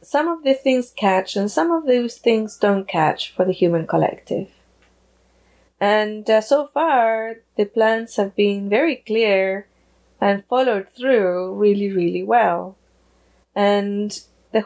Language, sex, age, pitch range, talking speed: English, female, 20-39, 180-225 Hz, 140 wpm